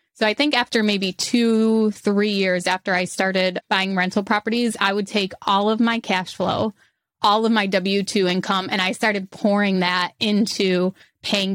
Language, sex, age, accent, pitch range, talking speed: English, female, 20-39, American, 190-215 Hz, 175 wpm